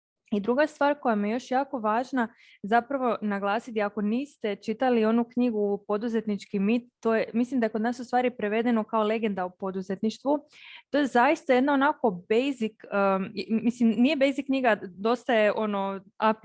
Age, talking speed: 20-39, 175 wpm